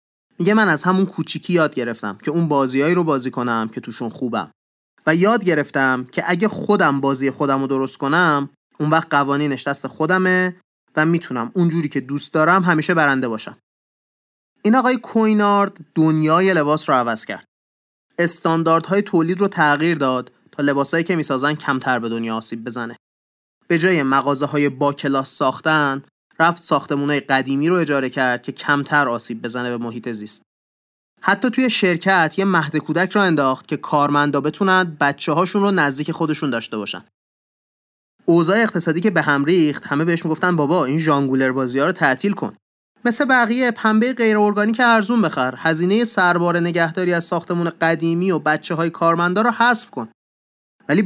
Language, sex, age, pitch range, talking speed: Persian, male, 30-49, 140-185 Hz, 160 wpm